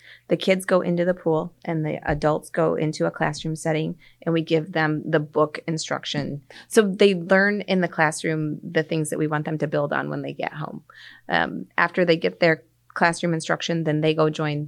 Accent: American